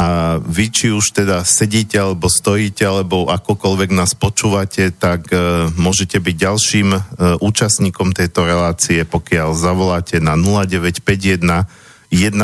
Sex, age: male, 50-69